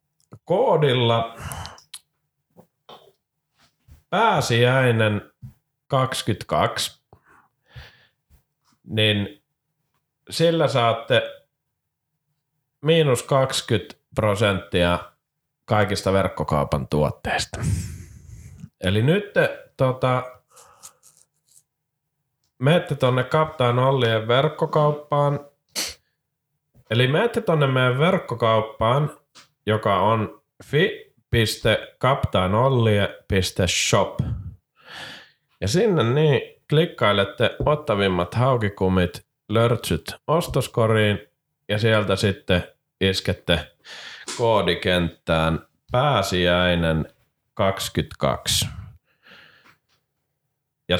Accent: native